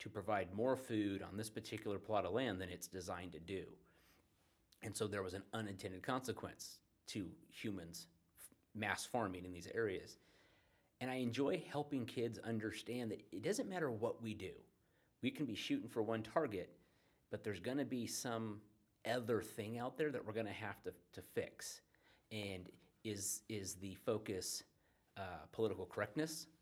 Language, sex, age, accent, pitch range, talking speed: English, male, 30-49, American, 95-120 Hz, 165 wpm